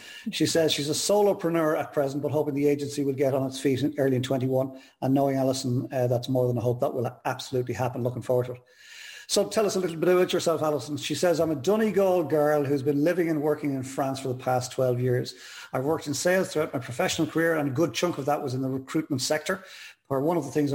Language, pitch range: English, 125-150 Hz